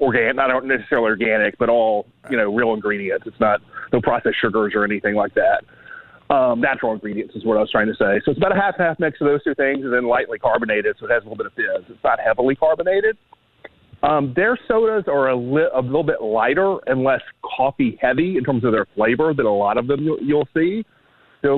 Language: English